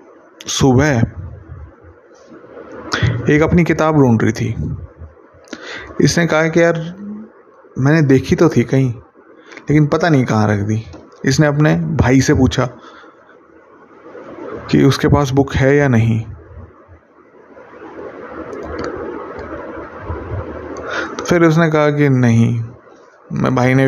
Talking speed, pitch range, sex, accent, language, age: 110 wpm, 120-140 Hz, male, native, Hindi, 20-39